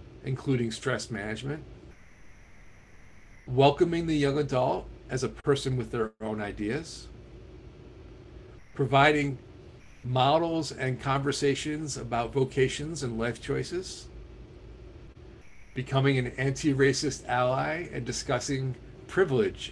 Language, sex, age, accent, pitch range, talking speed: English, male, 50-69, American, 115-140 Hz, 90 wpm